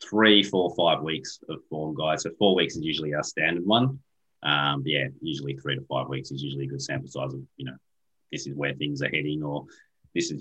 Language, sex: English, male